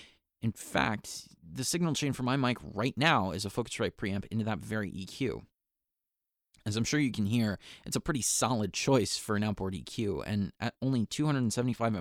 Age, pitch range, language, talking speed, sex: 30-49, 100-130 Hz, English, 185 wpm, male